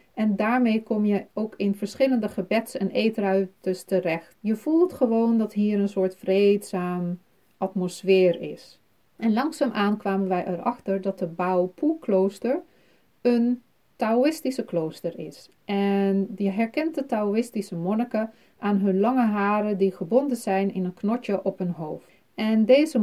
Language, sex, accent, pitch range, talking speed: Dutch, female, Dutch, 185-230 Hz, 145 wpm